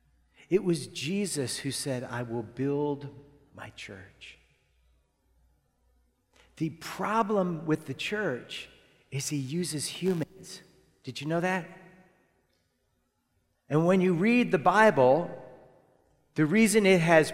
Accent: American